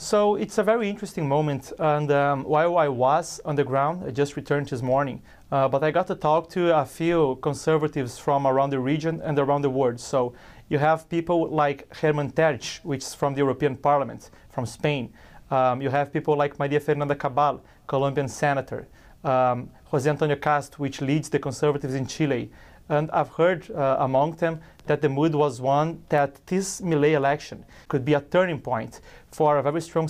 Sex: male